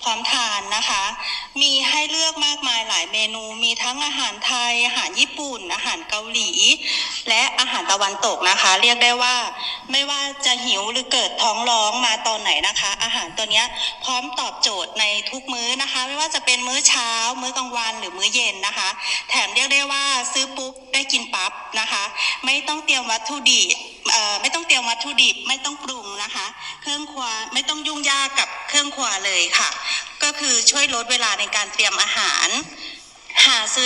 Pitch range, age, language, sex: 220-275 Hz, 20-39, Thai, female